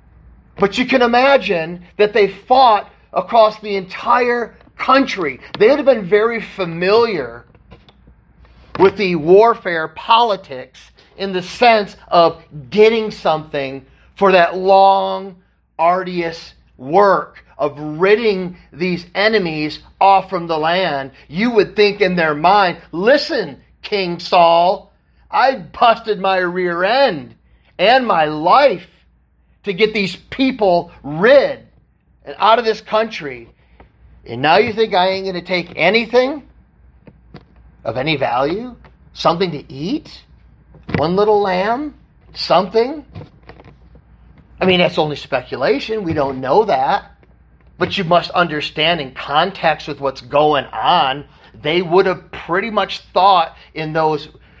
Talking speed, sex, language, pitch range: 125 wpm, male, English, 155-215 Hz